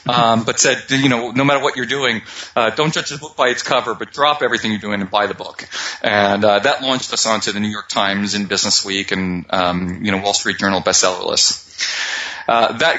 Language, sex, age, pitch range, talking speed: English, male, 40-59, 105-135 Hz, 225 wpm